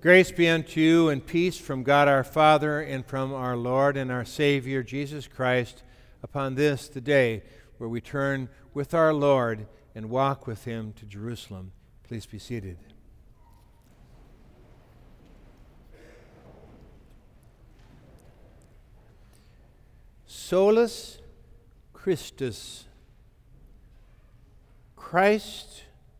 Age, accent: 60-79, American